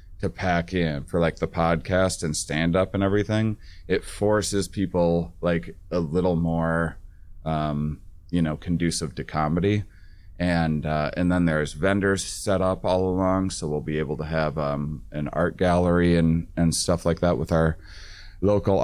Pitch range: 85-95 Hz